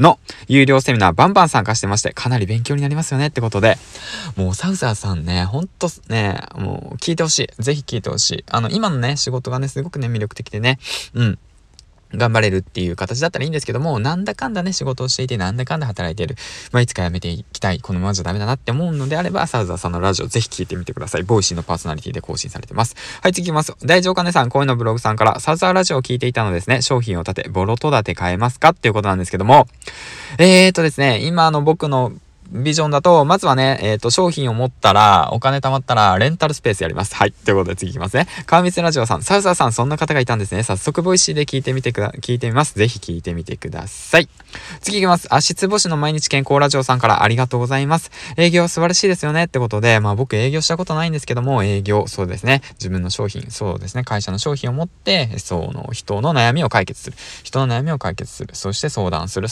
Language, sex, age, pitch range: Japanese, male, 20-39, 105-150 Hz